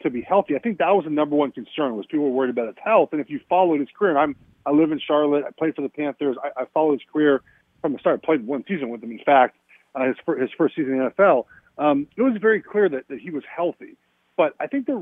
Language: English